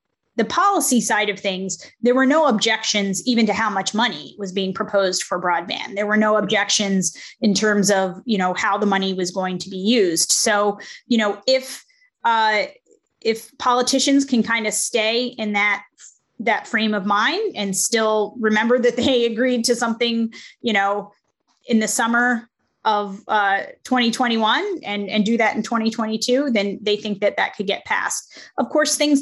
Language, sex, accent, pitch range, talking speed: English, female, American, 200-240 Hz, 175 wpm